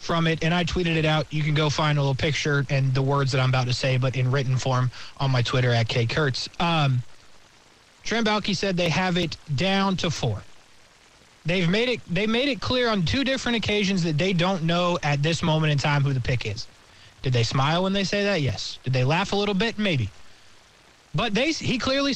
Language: English